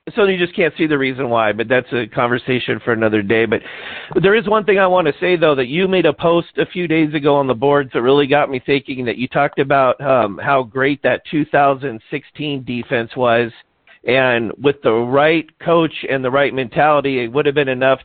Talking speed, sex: 225 wpm, male